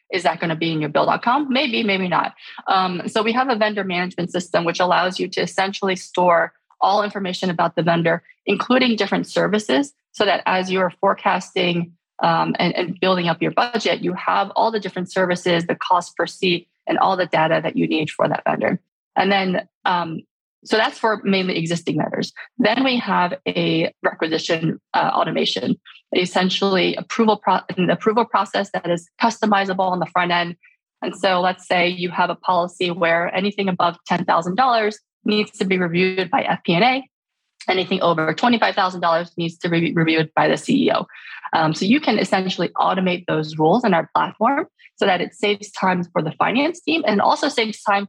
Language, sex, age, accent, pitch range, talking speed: English, female, 20-39, American, 175-210 Hz, 180 wpm